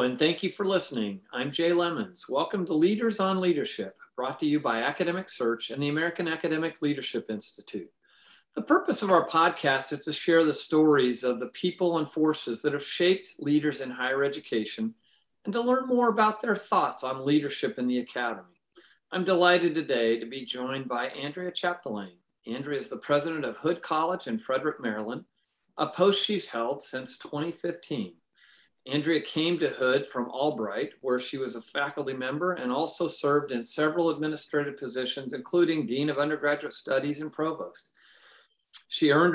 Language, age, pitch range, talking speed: English, 50-69, 130-170 Hz, 170 wpm